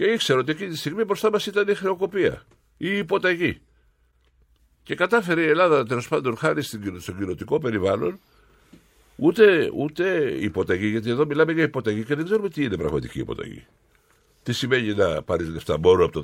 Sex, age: male, 60-79